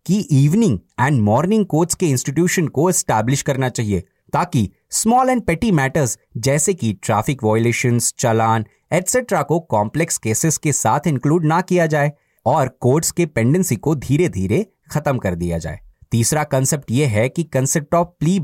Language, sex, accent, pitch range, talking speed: Hindi, male, native, 115-165 Hz, 160 wpm